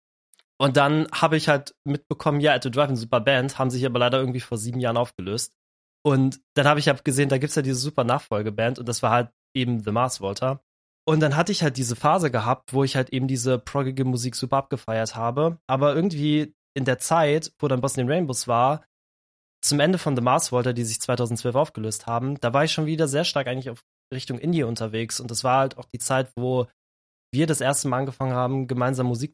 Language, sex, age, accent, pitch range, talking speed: German, male, 20-39, German, 120-145 Hz, 225 wpm